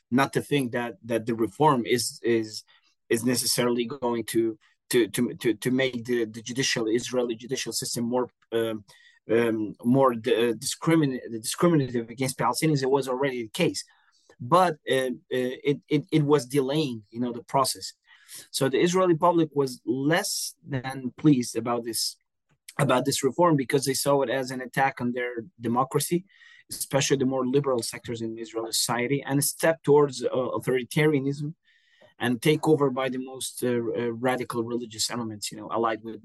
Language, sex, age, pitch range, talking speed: English, male, 30-49, 120-145 Hz, 165 wpm